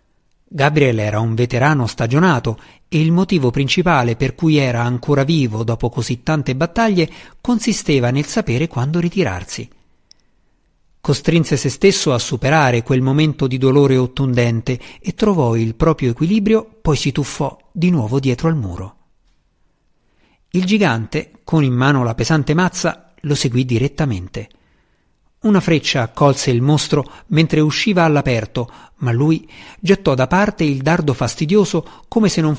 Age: 50-69